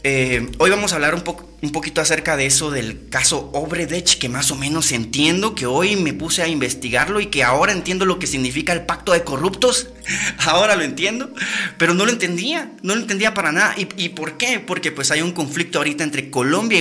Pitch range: 135-175 Hz